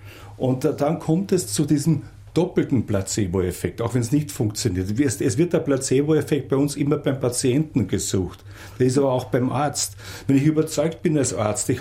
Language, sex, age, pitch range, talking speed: English, male, 50-69, 110-150 Hz, 185 wpm